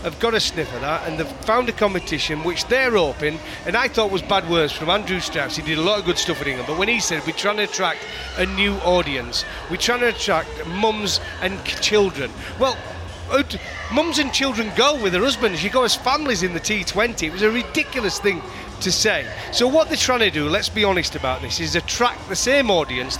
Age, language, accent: 30-49, English, British